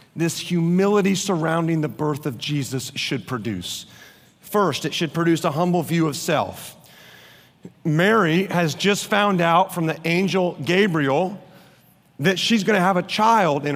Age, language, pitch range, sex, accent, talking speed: 40-59, English, 145-180 Hz, male, American, 150 wpm